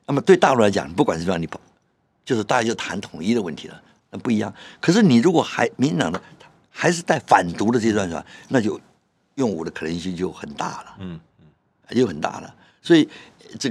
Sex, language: male, Chinese